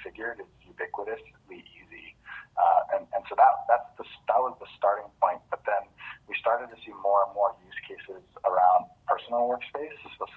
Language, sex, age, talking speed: English, male, 30-49, 185 wpm